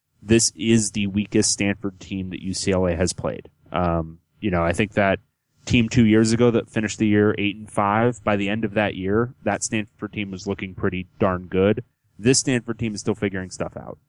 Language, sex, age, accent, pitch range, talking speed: English, male, 20-39, American, 95-115 Hz, 210 wpm